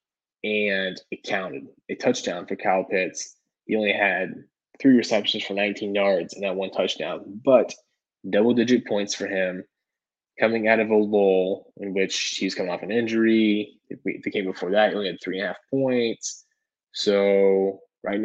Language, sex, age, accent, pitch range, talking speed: English, male, 20-39, American, 95-115 Hz, 180 wpm